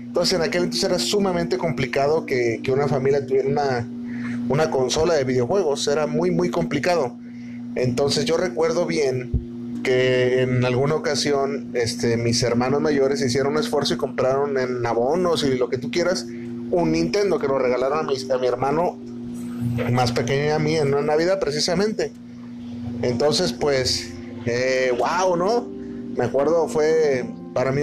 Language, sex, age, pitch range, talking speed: Spanish, male, 30-49, 120-155 Hz, 155 wpm